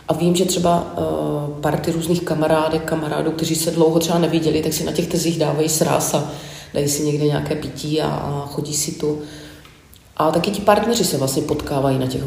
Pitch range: 150-165 Hz